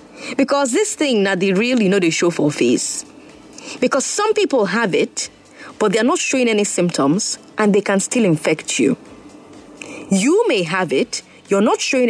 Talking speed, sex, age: 180 wpm, female, 30-49